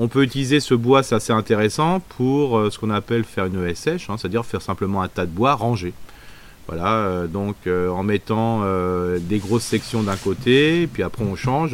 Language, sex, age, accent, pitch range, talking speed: French, male, 30-49, French, 95-115 Hz, 215 wpm